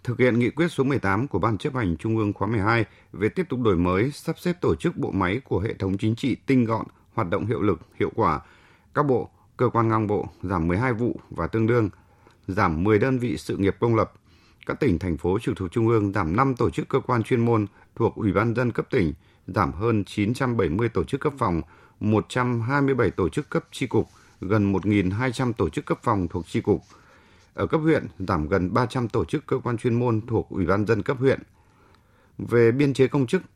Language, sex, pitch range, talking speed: Vietnamese, male, 95-125 Hz, 225 wpm